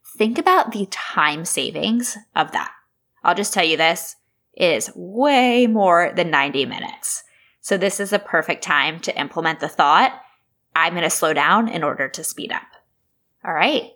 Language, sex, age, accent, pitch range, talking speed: English, female, 10-29, American, 160-215 Hz, 170 wpm